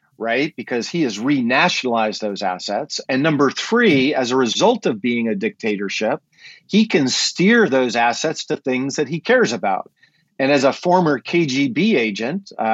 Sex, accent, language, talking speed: male, American, English, 160 wpm